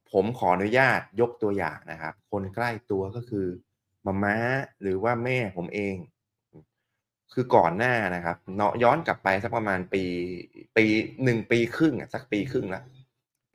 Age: 20-39